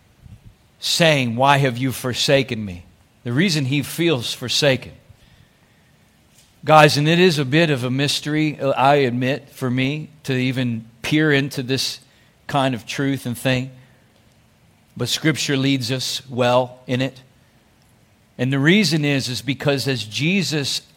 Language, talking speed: English, 140 wpm